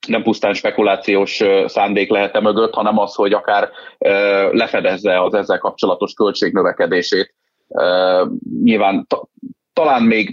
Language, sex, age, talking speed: Hungarian, male, 30-49, 105 wpm